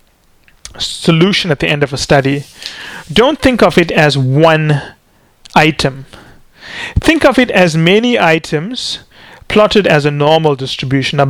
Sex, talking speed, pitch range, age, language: male, 140 wpm, 140-190 Hz, 30-49, English